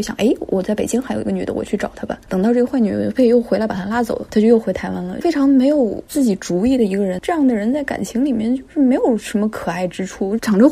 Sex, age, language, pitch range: female, 20-39, Chinese, 200-255 Hz